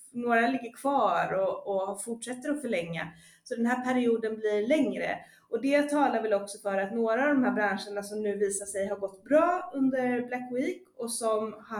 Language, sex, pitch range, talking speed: Swedish, female, 195-250 Hz, 195 wpm